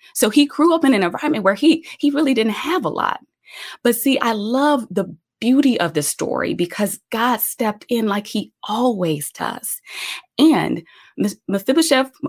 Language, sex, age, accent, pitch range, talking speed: English, female, 20-39, American, 215-300 Hz, 165 wpm